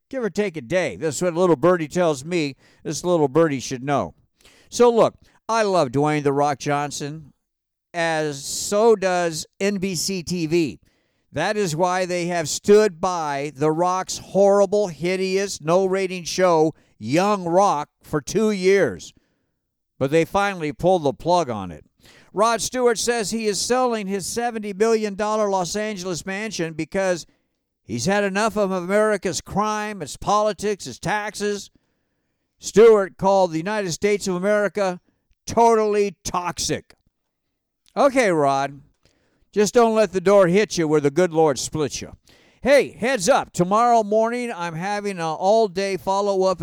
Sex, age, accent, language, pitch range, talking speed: male, 50-69, American, English, 160-215 Hz, 145 wpm